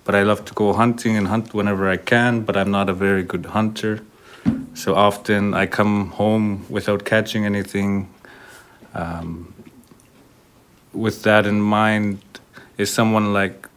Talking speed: 150 wpm